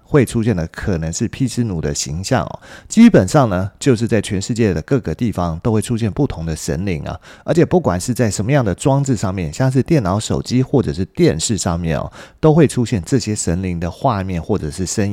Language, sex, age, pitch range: Chinese, male, 30-49, 95-135 Hz